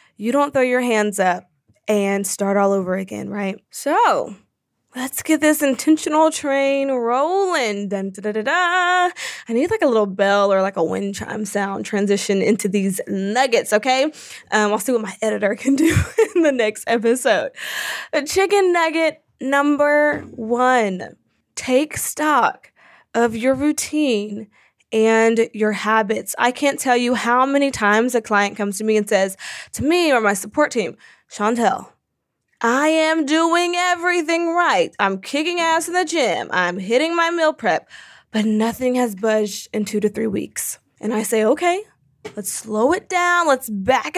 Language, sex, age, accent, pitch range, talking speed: English, female, 20-39, American, 215-305 Hz, 160 wpm